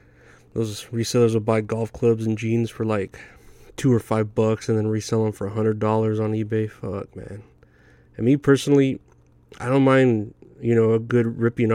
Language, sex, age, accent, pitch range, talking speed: English, male, 20-39, American, 105-115 Hz, 190 wpm